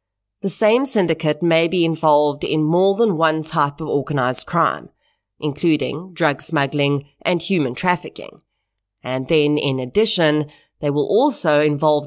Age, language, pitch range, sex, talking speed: 30-49, English, 140-170 Hz, female, 140 wpm